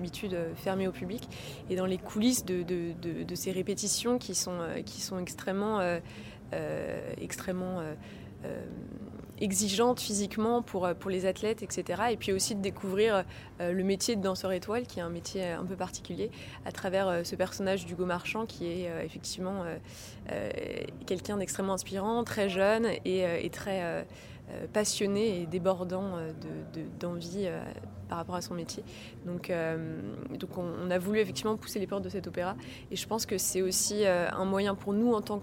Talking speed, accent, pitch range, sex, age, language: 175 wpm, French, 175-200 Hz, female, 20-39, French